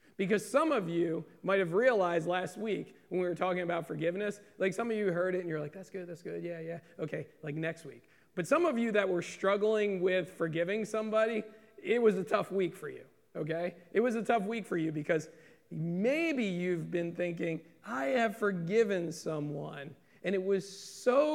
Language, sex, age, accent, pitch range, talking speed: English, male, 40-59, American, 165-220 Hz, 200 wpm